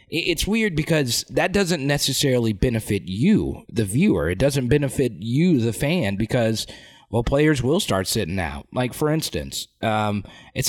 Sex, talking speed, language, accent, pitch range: male, 155 wpm, English, American, 110-140 Hz